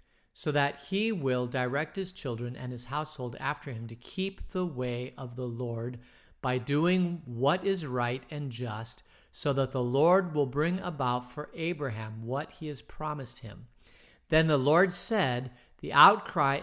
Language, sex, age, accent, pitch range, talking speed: English, male, 40-59, American, 125-175 Hz, 165 wpm